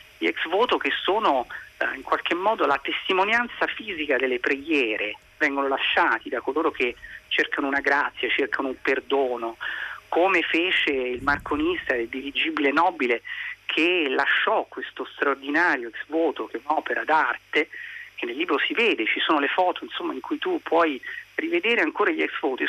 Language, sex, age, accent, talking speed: Italian, male, 40-59, native, 160 wpm